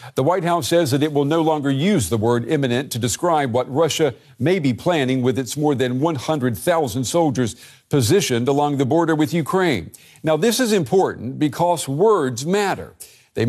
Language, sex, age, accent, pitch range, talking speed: English, male, 50-69, American, 130-170 Hz, 180 wpm